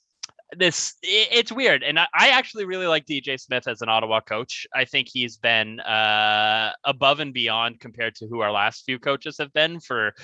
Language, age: English, 20-39